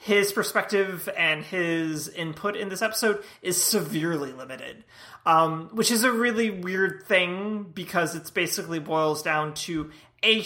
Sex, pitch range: male, 155-210 Hz